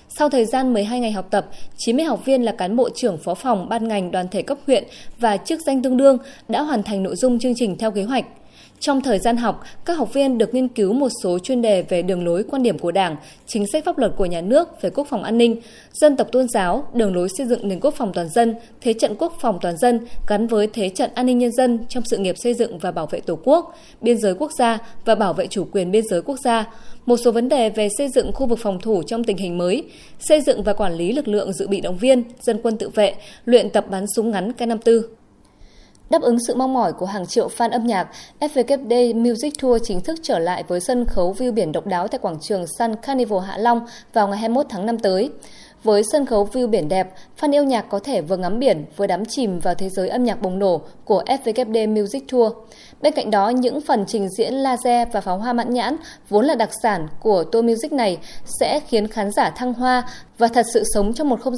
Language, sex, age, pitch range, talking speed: Vietnamese, female, 20-39, 200-255 Hz, 250 wpm